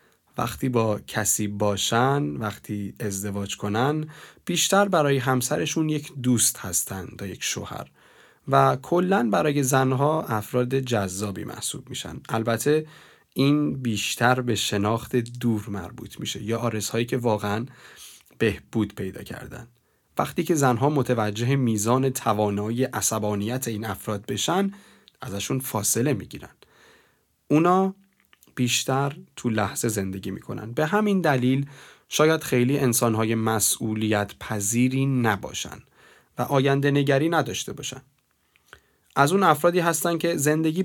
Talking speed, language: 115 wpm, Persian